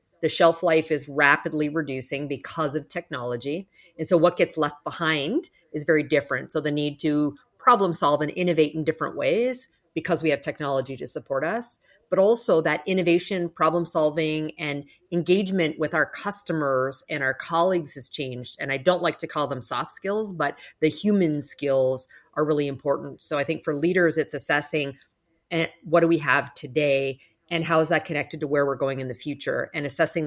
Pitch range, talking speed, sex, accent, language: 145-175 Hz, 190 wpm, female, American, English